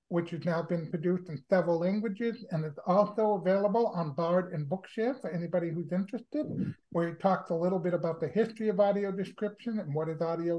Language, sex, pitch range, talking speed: English, male, 160-195 Hz, 205 wpm